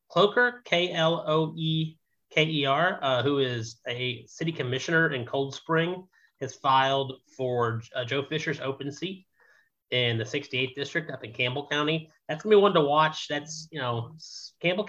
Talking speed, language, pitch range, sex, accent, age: 175 wpm, English, 120-155 Hz, male, American, 30-49